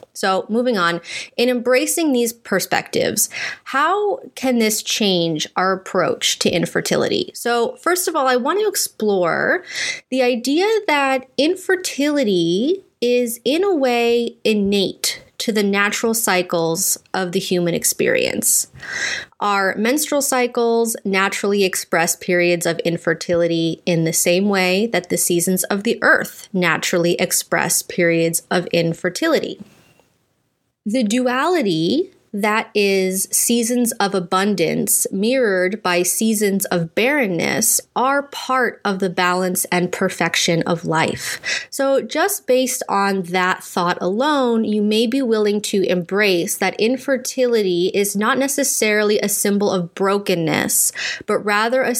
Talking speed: 125 wpm